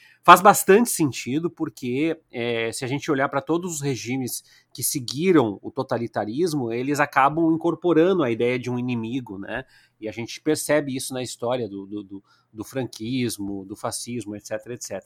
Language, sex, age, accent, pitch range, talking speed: Portuguese, male, 30-49, Brazilian, 125-185 Hz, 165 wpm